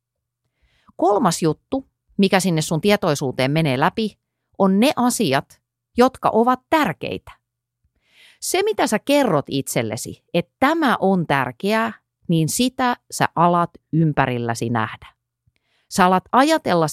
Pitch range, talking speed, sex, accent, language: 125-185 Hz, 115 wpm, female, native, Finnish